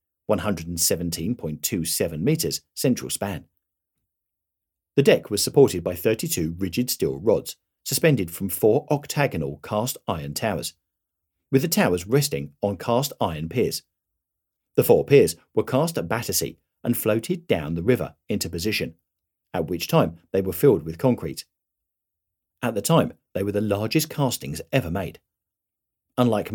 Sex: male